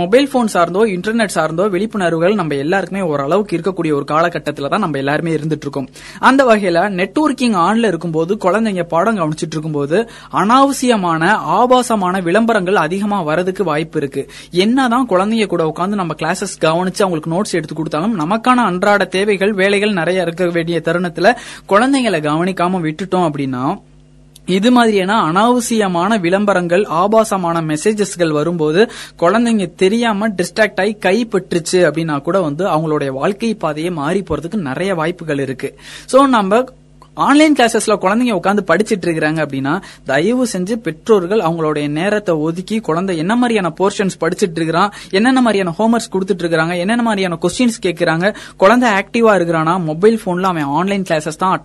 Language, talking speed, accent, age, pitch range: Tamil, 125 wpm, native, 20-39, 165-220 Hz